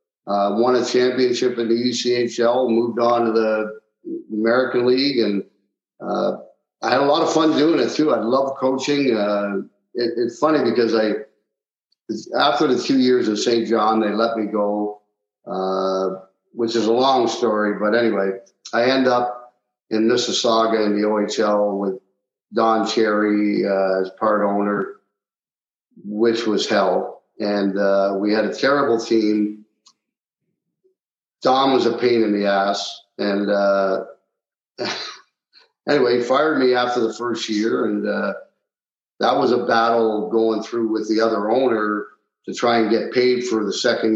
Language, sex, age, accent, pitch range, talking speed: English, male, 50-69, American, 105-120 Hz, 155 wpm